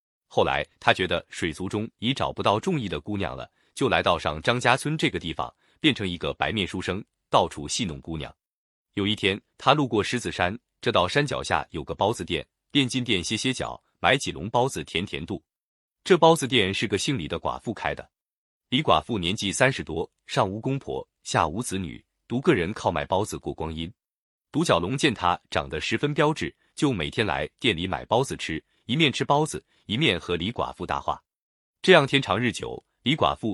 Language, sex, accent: Chinese, male, native